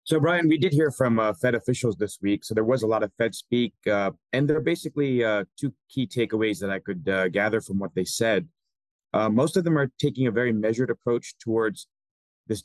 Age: 30-49